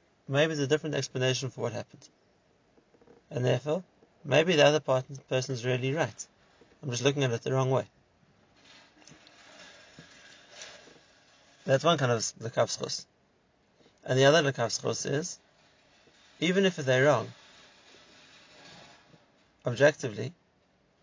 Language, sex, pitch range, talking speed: English, male, 125-150 Hz, 115 wpm